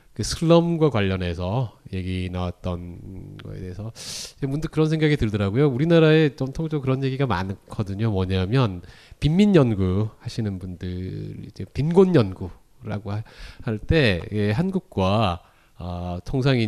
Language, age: Korean, 30-49